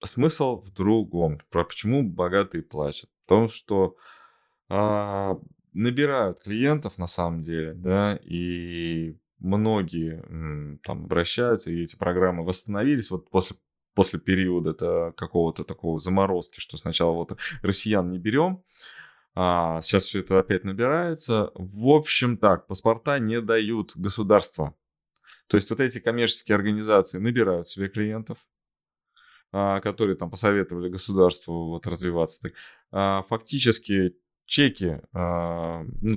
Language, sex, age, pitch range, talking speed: Russian, male, 20-39, 90-110 Hz, 115 wpm